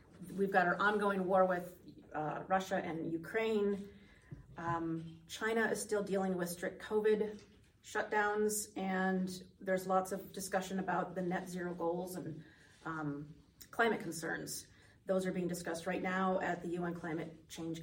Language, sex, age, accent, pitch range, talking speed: English, female, 30-49, American, 170-195 Hz, 150 wpm